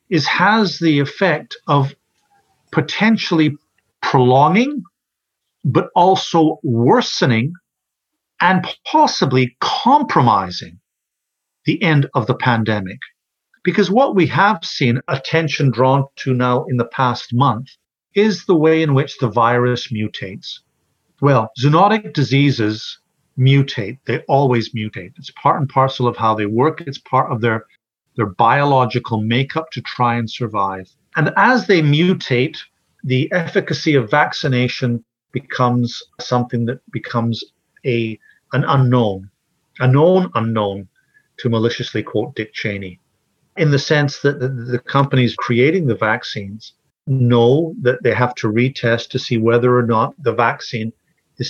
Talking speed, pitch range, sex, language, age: 130 wpm, 120-150 Hz, male, English, 50-69